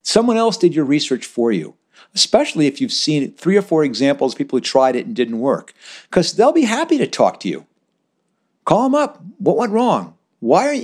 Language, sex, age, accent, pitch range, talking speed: English, male, 60-79, American, 115-165 Hz, 215 wpm